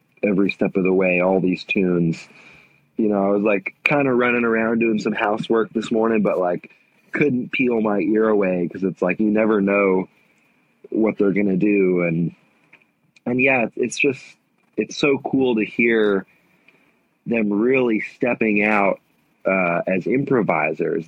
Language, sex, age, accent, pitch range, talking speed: English, male, 20-39, American, 95-115 Hz, 160 wpm